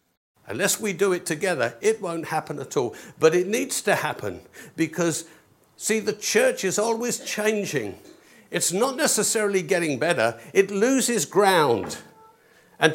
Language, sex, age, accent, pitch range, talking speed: English, male, 60-79, British, 180-230 Hz, 145 wpm